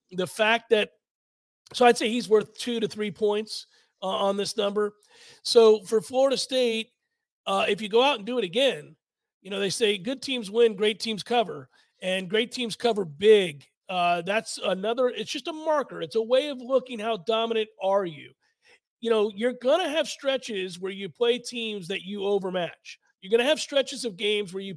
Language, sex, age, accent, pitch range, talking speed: English, male, 40-59, American, 190-250 Hz, 200 wpm